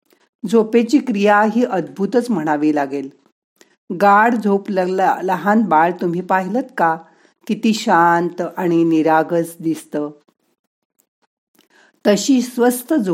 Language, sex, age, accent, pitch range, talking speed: Marathi, female, 50-69, native, 165-225 Hz, 75 wpm